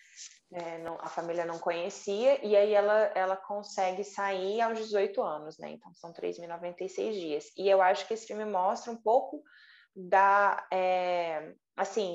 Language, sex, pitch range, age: Portuguese, female, 190-230 Hz, 20-39